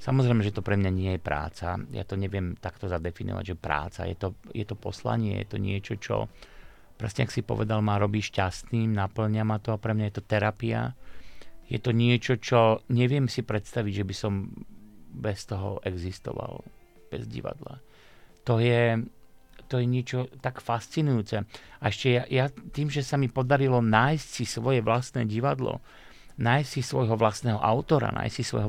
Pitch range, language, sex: 100-120 Hz, Slovak, male